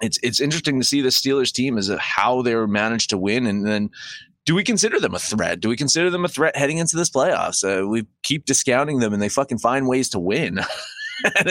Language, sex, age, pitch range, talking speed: English, male, 30-49, 115-160 Hz, 240 wpm